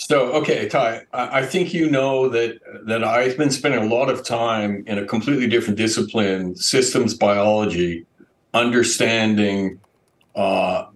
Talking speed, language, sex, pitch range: 135 wpm, English, male, 105-120 Hz